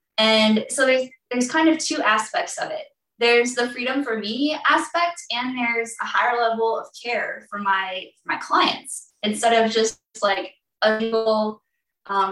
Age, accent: 10-29, American